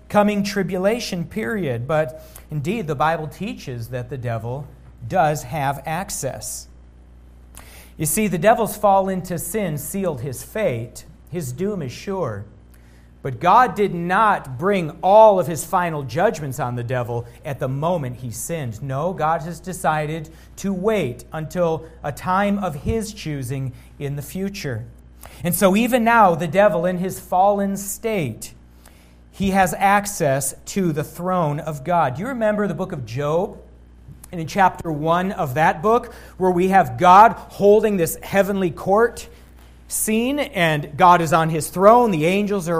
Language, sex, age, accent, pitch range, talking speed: English, male, 40-59, American, 130-195 Hz, 155 wpm